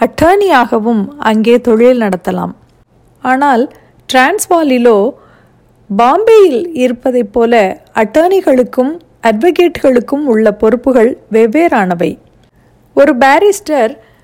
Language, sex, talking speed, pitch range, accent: Tamil, female, 65 wpm, 215-295 Hz, native